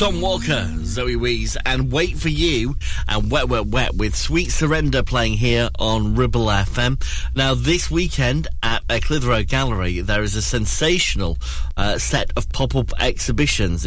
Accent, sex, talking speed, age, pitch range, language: British, male, 150 wpm, 30-49, 100-130 Hz, English